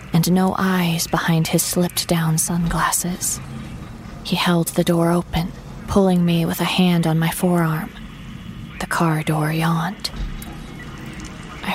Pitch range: 160-180 Hz